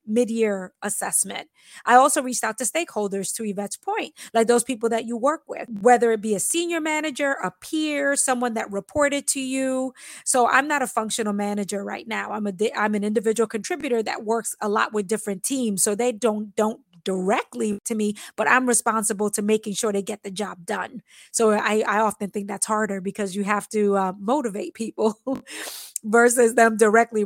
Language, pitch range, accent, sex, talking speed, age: English, 215-260 Hz, American, female, 190 wpm, 20-39